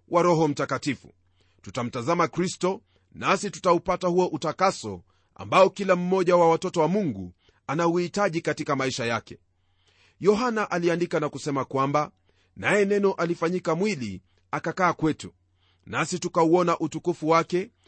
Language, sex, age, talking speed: Swahili, male, 40-59, 120 wpm